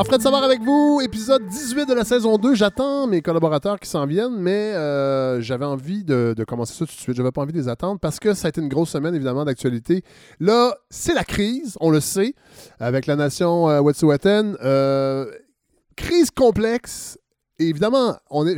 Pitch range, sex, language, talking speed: 120-170 Hz, male, French, 195 wpm